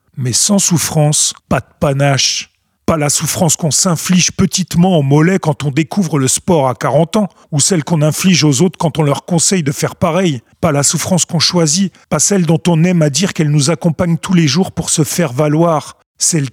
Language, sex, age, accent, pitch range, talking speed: French, male, 40-59, French, 145-175 Hz, 210 wpm